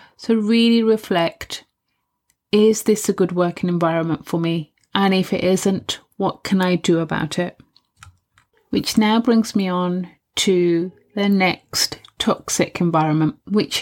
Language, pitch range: English, 170-205 Hz